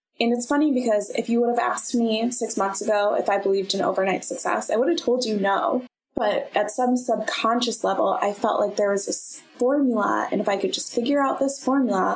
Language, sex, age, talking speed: English, female, 20-39, 225 wpm